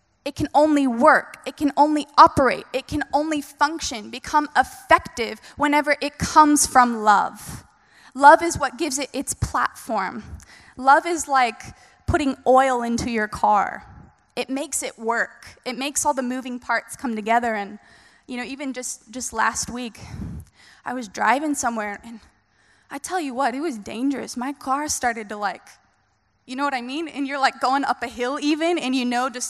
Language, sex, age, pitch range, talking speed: English, female, 20-39, 240-295 Hz, 180 wpm